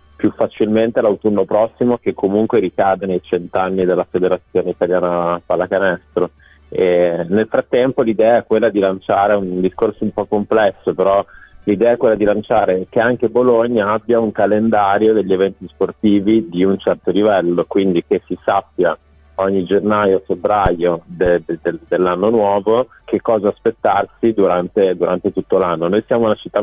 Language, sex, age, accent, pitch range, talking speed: Italian, male, 40-59, native, 90-105 Hz, 150 wpm